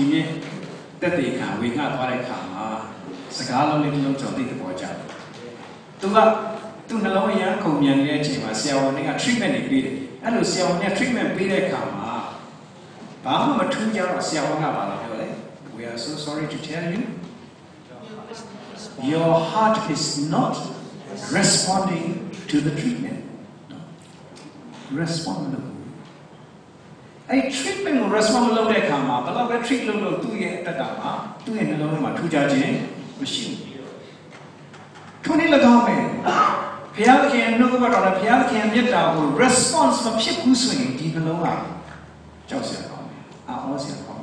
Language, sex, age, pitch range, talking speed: English, male, 60-79, 155-240 Hz, 35 wpm